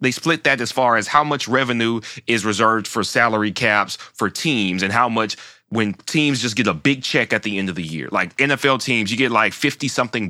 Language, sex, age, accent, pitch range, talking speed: English, male, 30-49, American, 105-150 Hz, 225 wpm